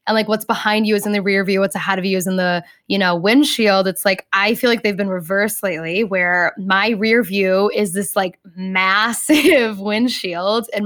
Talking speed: 215 wpm